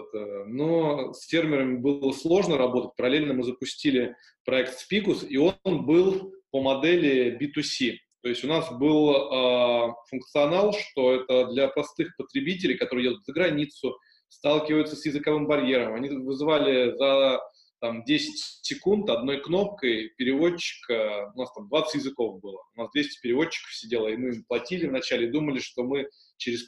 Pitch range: 125-160 Hz